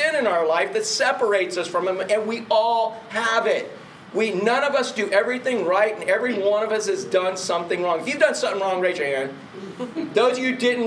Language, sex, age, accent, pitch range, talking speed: English, male, 40-59, American, 200-255 Hz, 225 wpm